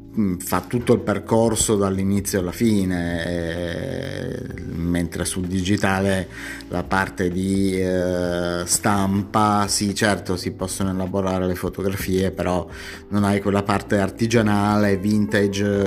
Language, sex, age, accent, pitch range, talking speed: Italian, male, 30-49, native, 90-105 Hz, 110 wpm